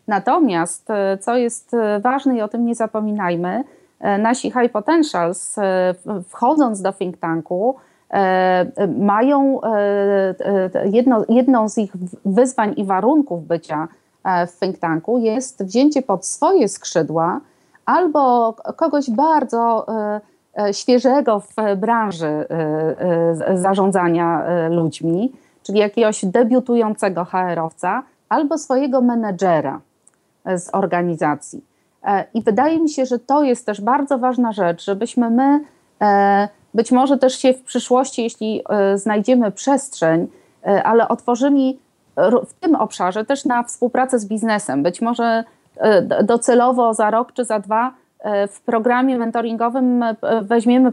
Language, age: Polish, 30-49